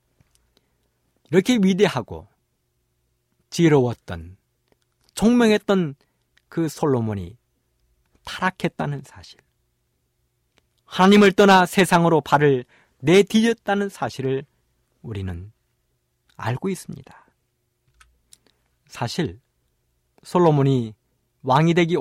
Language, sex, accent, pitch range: Korean, male, native, 115-185 Hz